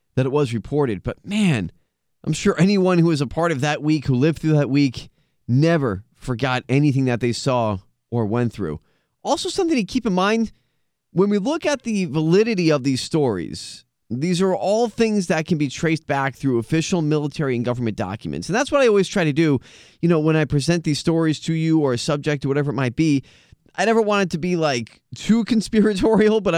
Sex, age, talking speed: male, 20-39, 215 wpm